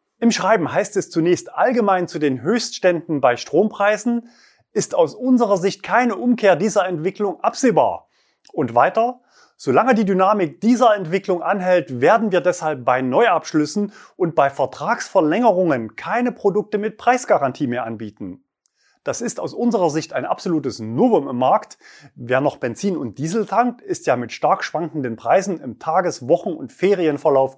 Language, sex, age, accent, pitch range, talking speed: German, male, 30-49, German, 150-215 Hz, 150 wpm